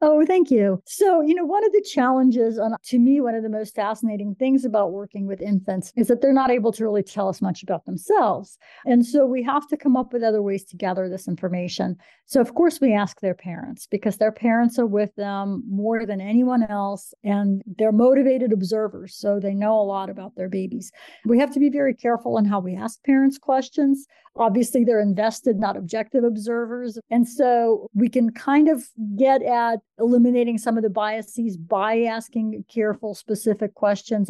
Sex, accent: female, American